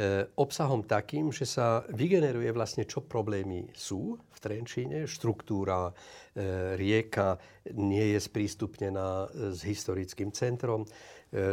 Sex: male